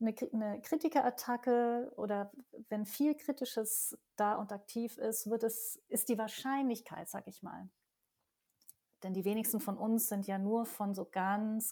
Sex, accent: female, German